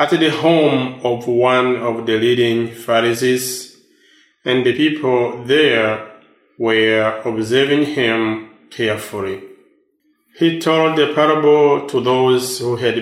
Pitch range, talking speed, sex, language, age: 115-145 Hz, 115 wpm, male, English, 20-39